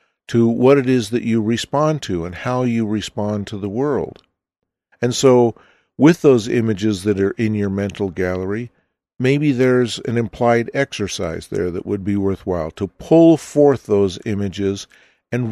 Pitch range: 100-130 Hz